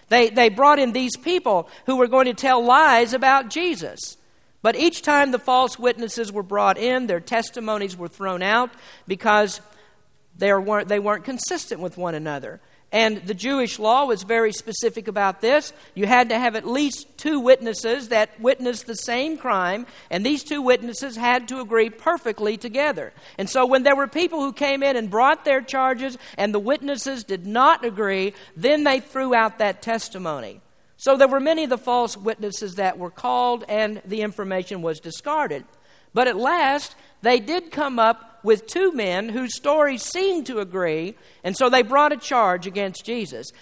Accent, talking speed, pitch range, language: American, 180 wpm, 205-270 Hz, English